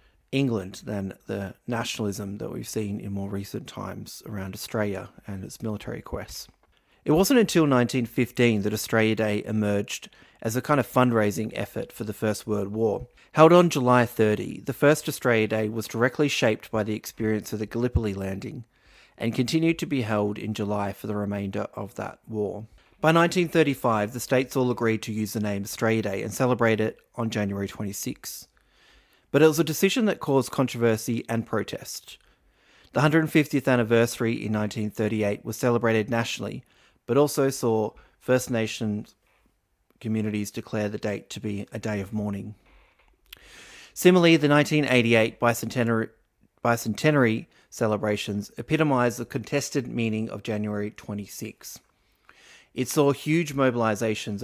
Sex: male